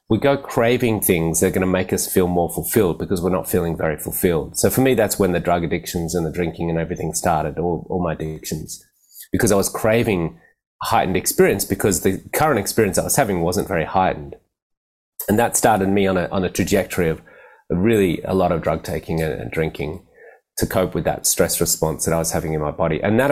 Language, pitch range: English, 80-95 Hz